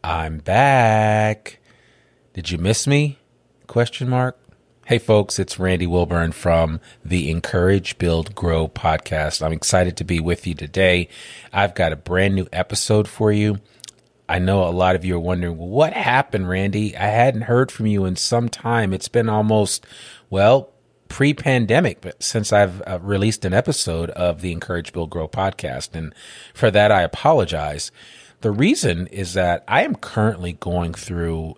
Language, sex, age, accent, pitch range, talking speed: English, male, 40-59, American, 85-105 Hz, 160 wpm